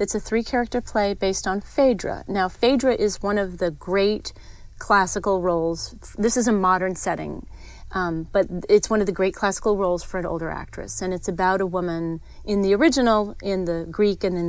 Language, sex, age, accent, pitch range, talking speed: English, female, 30-49, American, 175-205 Hz, 195 wpm